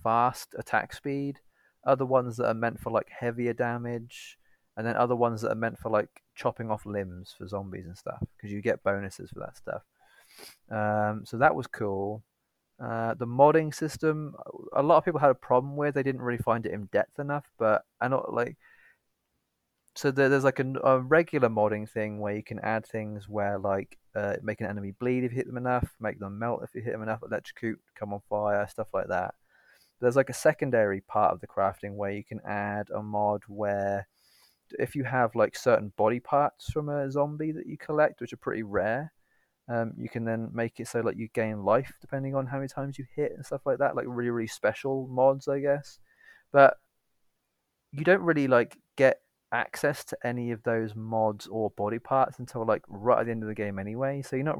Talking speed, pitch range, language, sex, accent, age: 210 wpm, 105-135 Hz, English, male, British, 20-39